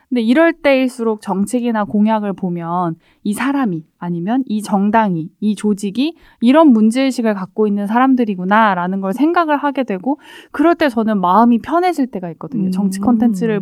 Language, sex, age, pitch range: Korean, female, 20-39, 200-265 Hz